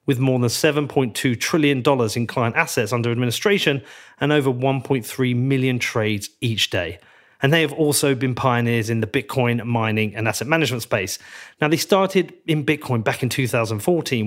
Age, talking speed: 30-49, 165 wpm